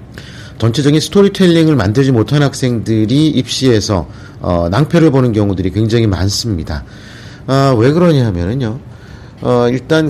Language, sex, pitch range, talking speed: English, male, 105-145 Hz, 100 wpm